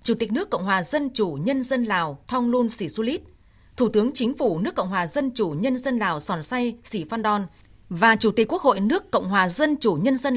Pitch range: 200-260 Hz